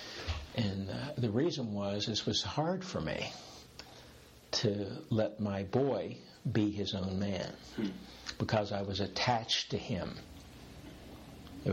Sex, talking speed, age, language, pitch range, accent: male, 125 wpm, 60-79, English, 100-120 Hz, American